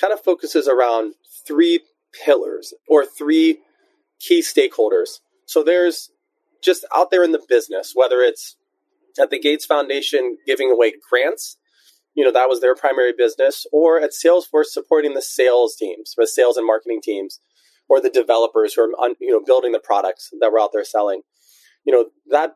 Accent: American